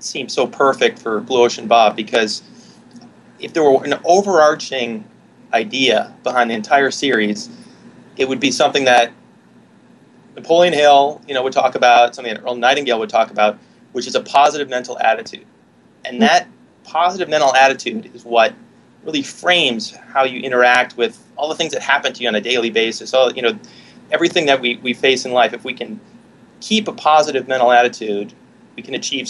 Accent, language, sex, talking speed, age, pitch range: American, English, male, 180 wpm, 30-49, 120-150 Hz